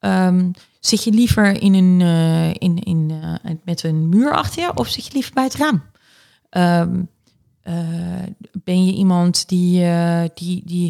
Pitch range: 165-215 Hz